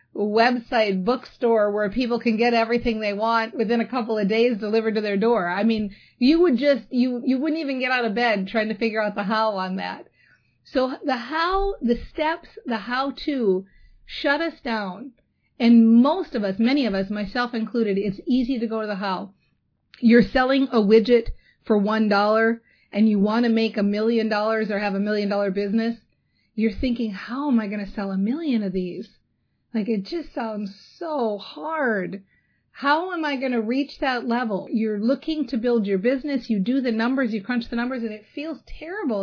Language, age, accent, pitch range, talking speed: English, 40-59, American, 210-255 Hz, 200 wpm